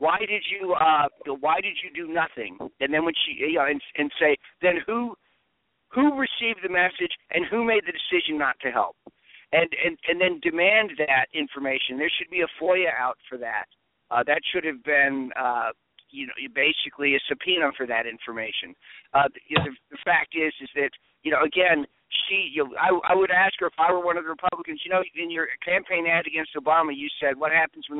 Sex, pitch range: male, 145-180 Hz